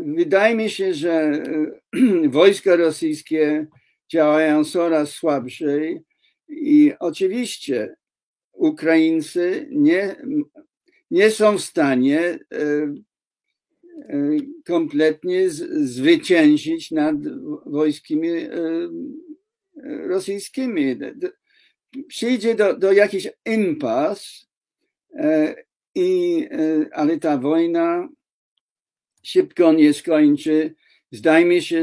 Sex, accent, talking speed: male, native, 70 wpm